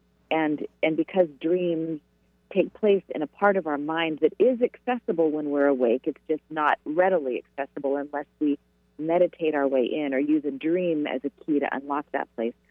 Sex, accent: female, American